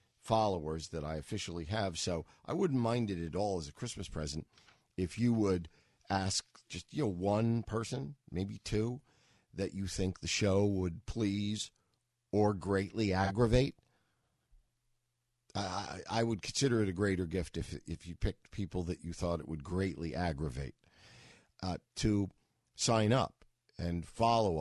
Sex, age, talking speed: male, 50-69, 155 wpm